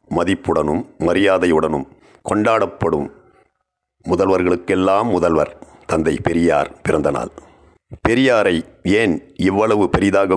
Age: 60-79